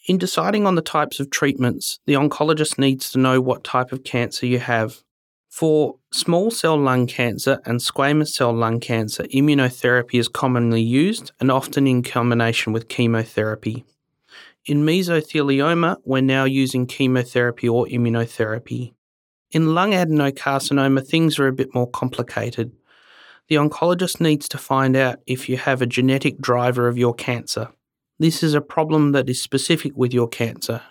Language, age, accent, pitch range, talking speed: English, 30-49, Australian, 120-145 Hz, 155 wpm